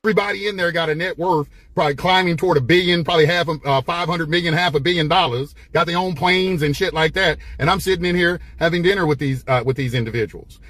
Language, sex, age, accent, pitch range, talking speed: English, male, 30-49, American, 135-175 Hz, 240 wpm